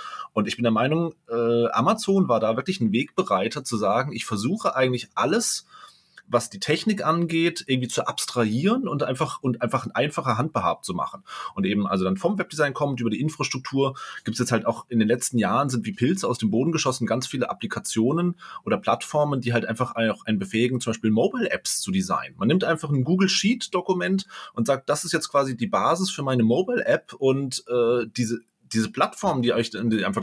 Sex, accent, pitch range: male, German, 115-160 Hz